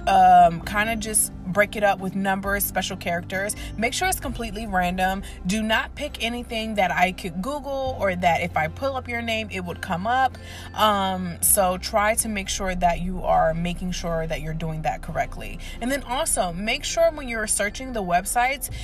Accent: American